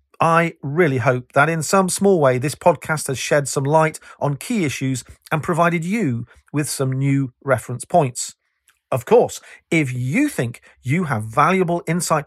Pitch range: 130-170 Hz